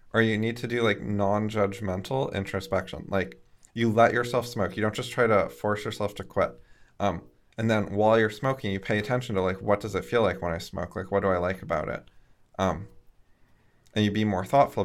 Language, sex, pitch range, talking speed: English, male, 90-110 Hz, 220 wpm